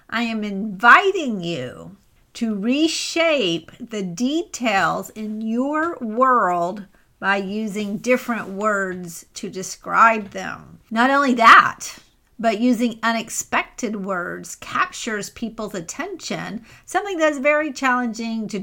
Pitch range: 200-265 Hz